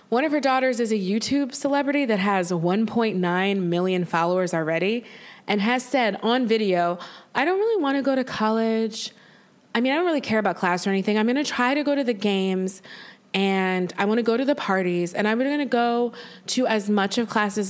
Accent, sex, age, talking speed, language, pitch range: American, female, 20-39, 215 wpm, English, 185-240 Hz